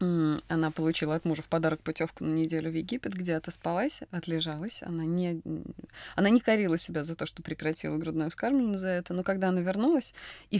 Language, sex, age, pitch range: Russian, female, 20-39, 165-235 Hz